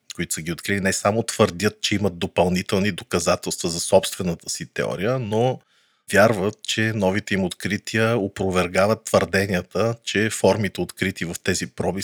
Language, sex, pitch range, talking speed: Bulgarian, male, 95-115 Hz, 145 wpm